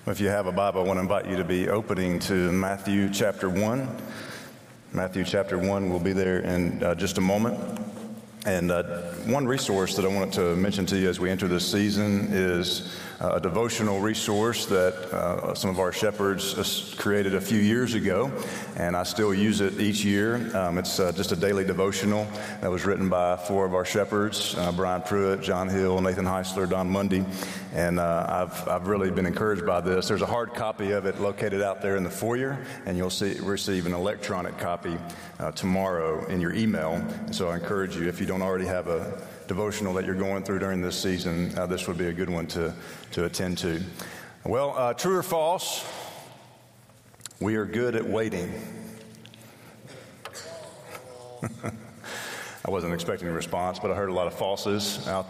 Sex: male